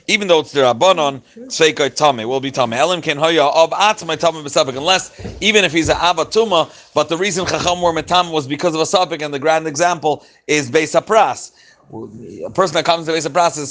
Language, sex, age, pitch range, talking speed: English, male, 30-49, 145-175 Hz, 170 wpm